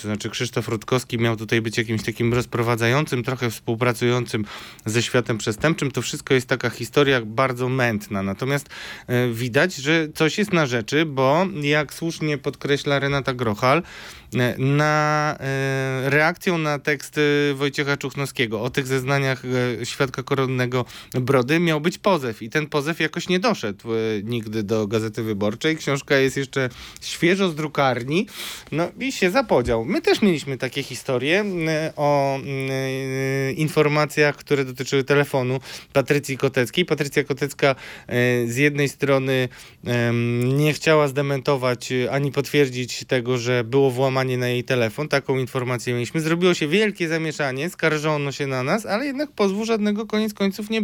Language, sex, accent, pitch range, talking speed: Polish, male, native, 125-160 Hz, 140 wpm